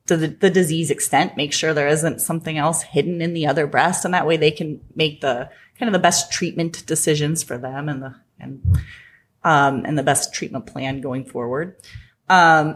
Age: 30-49